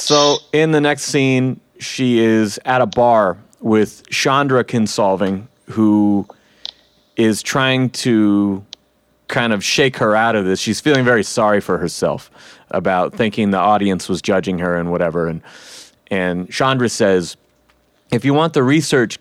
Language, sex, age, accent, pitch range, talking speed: English, male, 30-49, American, 105-150 Hz, 150 wpm